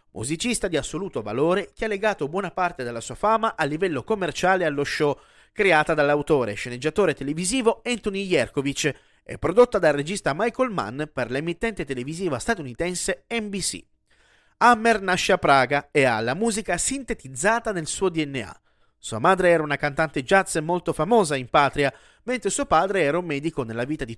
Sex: male